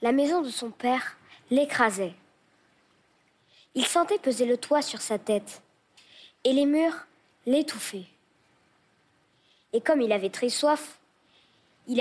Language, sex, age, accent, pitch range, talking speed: French, female, 20-39, French, 220-275 Hz, 125 wpm